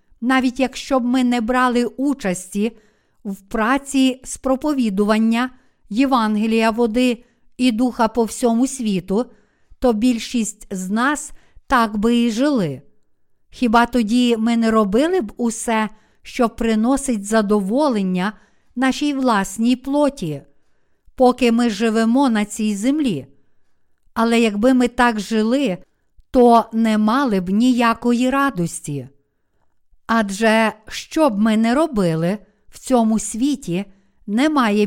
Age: 50-69